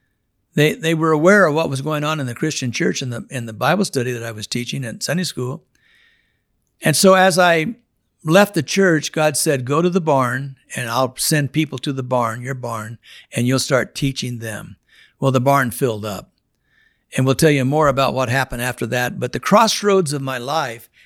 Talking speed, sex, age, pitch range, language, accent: 210 wpm, male, 60-79, 125-155 Hz, English, American